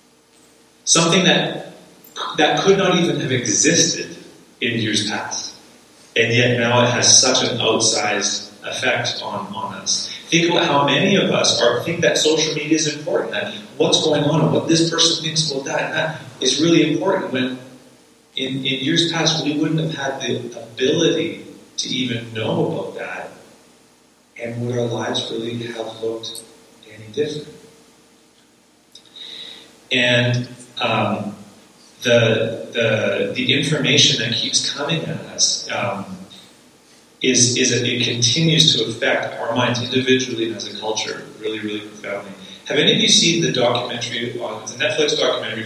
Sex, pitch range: male, 120-160 Hz